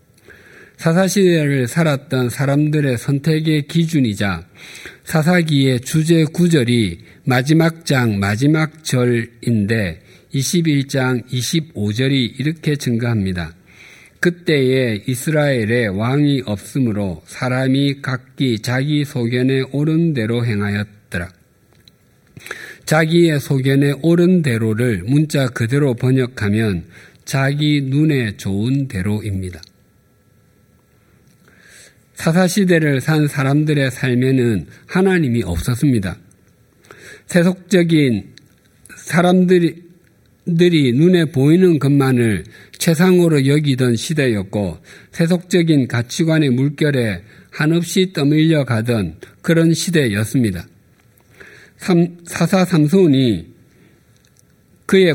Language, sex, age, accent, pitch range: Korean, male, 50-69, native, 115-160 Hz